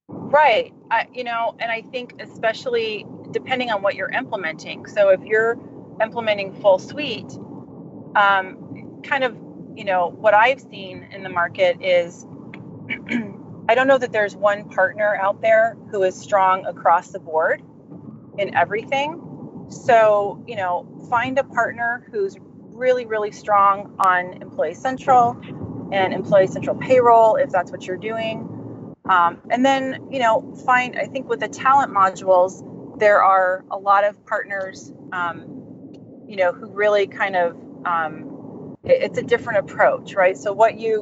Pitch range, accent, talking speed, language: 195-260 Hz, American, 150 wpm, English